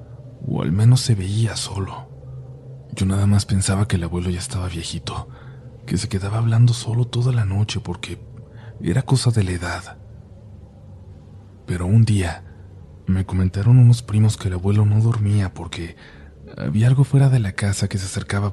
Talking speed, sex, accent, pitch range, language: 170 wpm, male, Mexican, 90-110 Hz, Spanish